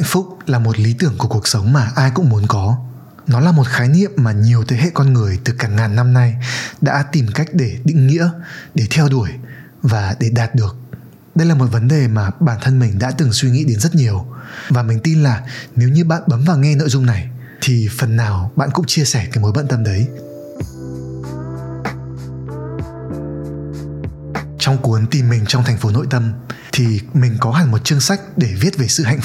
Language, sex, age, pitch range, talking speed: Vietnamese, male, 20-39, 110-145 Hz, 215 wpm